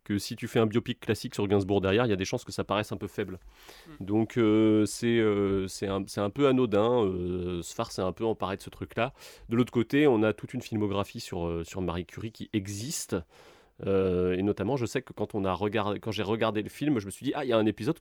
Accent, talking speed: French, 265 wpm